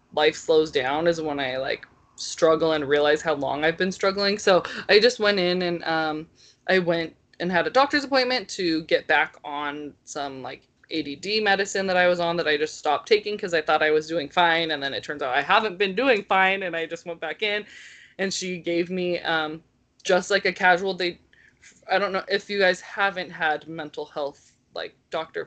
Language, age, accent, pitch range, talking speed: English, 20-39, American, 155-195 Hz, 215 wpm